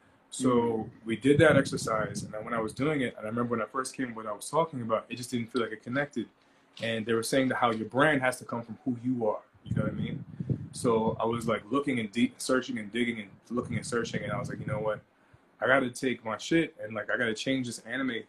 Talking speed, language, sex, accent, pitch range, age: 275 wpm, English, male, American, 115-140 Hz, 20-39